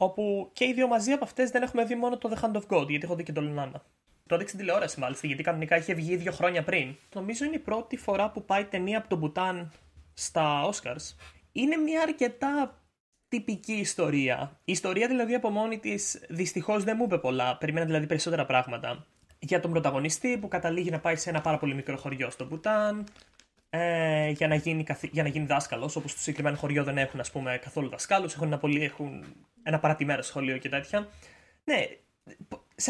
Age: 20-39